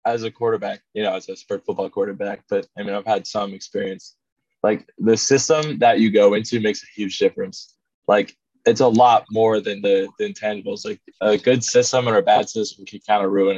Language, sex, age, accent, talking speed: English, male, 20-39, American, 215 wpm